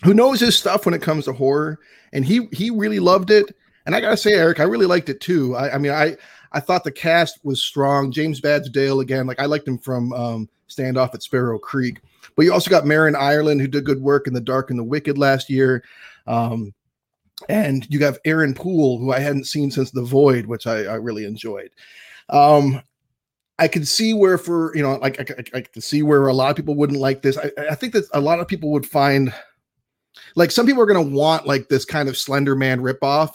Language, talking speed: English, 235 wpm